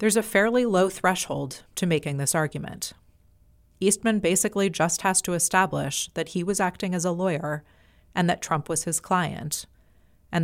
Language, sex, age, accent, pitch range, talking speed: English, female, 30-49, American, 145-185 Hz, 165 wpm